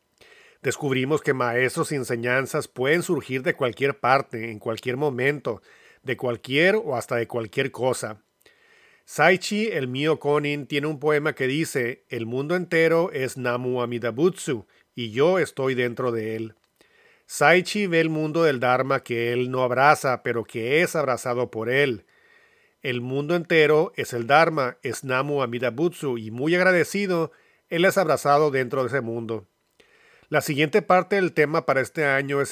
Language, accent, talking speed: English, Mexican, 155 wpm